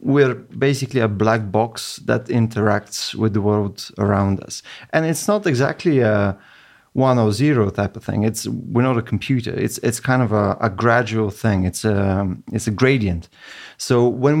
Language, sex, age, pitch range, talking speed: Bulgarian, male, 30-49, 110-135 Hz, 180 wpm